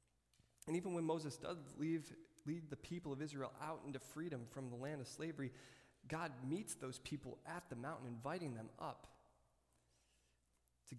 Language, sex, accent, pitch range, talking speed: English, male, American, 115-155 Hz, 165 wpm